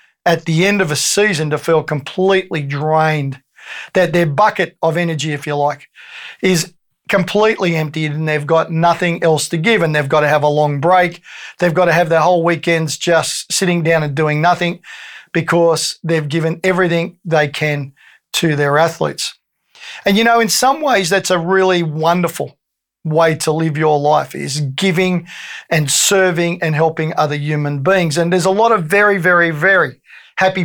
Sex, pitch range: male, 155-185 Hz